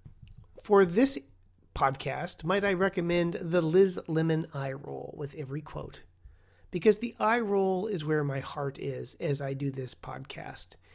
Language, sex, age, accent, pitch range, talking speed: English, male, 40-59, American, 135-200 Hz, 155 wpm